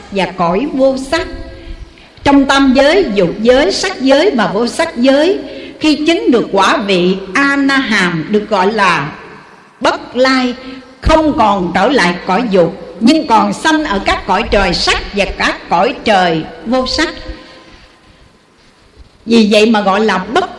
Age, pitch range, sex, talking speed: 60-79, 195-280 Hz, female, 150 wpm